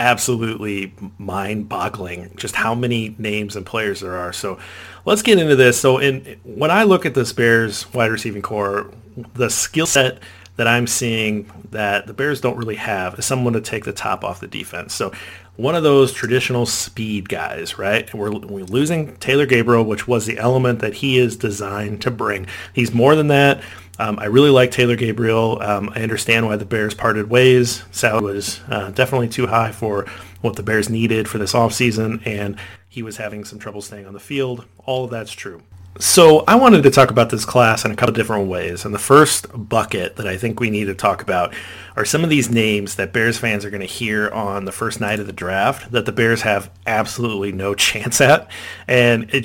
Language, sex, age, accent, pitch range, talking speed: English, male, 40-59, American, 105-125 Hz, 205 wpm